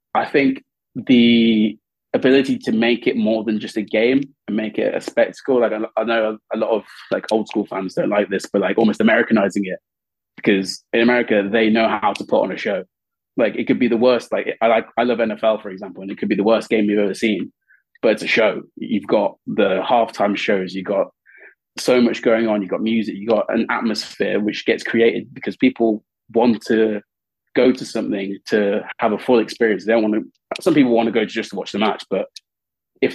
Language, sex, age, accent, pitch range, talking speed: English, male, 20-39, British, 110-120 Hz, 225 wpm